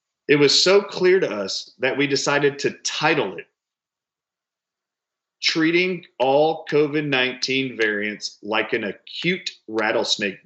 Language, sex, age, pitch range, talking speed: English, male, 40-59, 120-155 Hz, 115 wpm